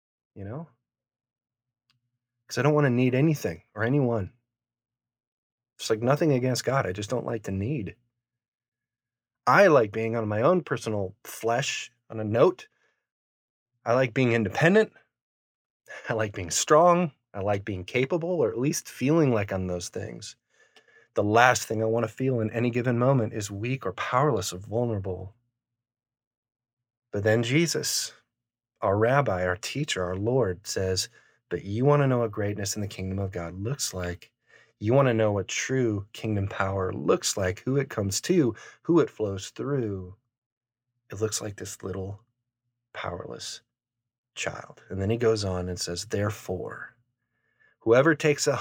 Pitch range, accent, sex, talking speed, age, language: 105-125 Hz, American, male, 160 wpm, 30-49, English